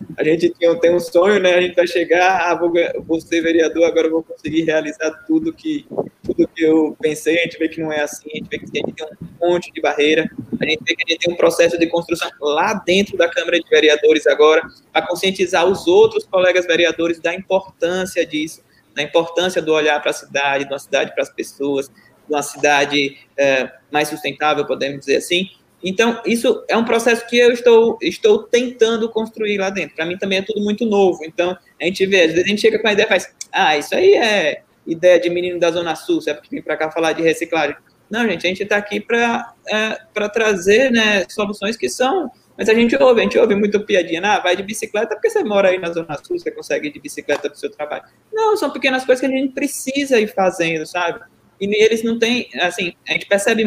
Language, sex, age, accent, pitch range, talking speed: Portuguese, male, 20-39, Brazilian, 165-230 Hz, 230 wpm